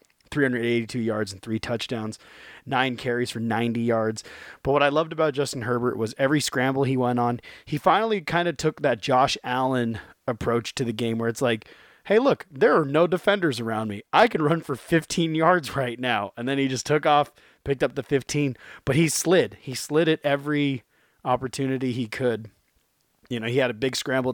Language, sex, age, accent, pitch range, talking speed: English, male, 30-49, American, 115-140 Hz, 200 wpm